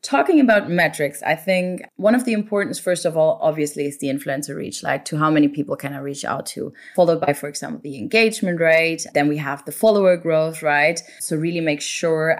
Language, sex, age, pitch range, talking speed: English, female, 20-39, 150-185 Hz, 220 wpm